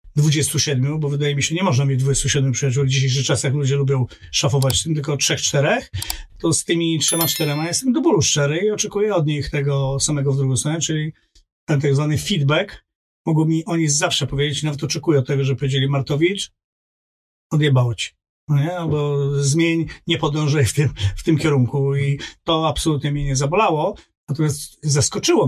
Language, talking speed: Polish, 175 wpm